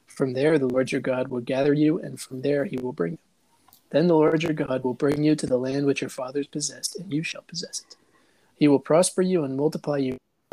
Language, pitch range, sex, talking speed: English, 130-155 Hz, male, 250 wpm